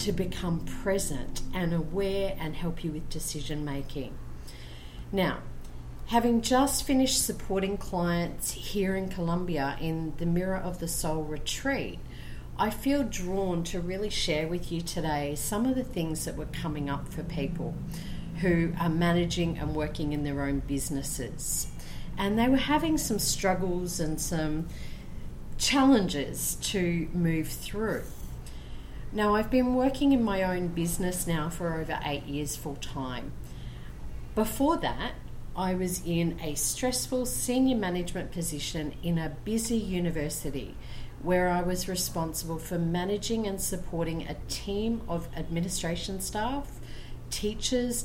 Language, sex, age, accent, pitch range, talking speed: English, female, 40-59, Australian, 150-195 Hz, 135 wpm